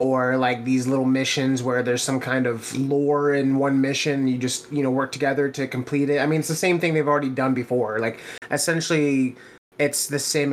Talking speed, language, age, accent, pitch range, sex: 215 wpm, English, 20-39, American, 125-145 Hz, male